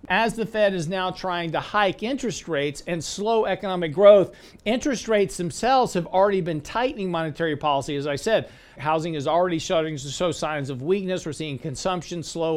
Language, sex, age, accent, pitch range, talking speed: English, male, 50-69, American, 150-190 Hz, 185 wpm